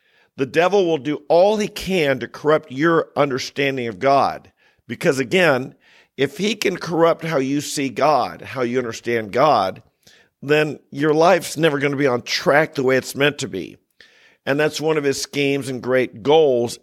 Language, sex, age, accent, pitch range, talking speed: English, male, 50-69, American, 130-165 Hz, 180 wpm